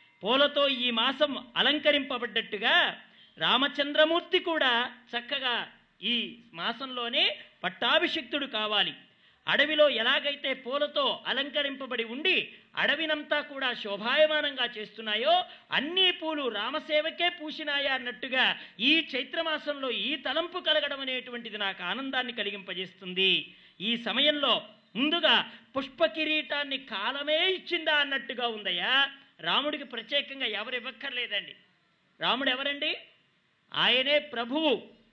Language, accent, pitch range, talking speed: English, Indian, 230-300 Hz, 90 wpm